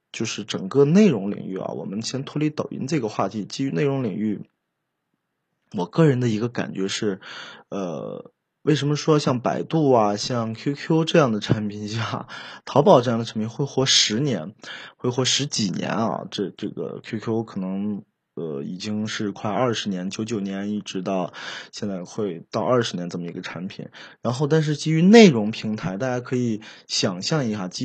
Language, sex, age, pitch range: Chinese, male, 20-39, 100-140 Hz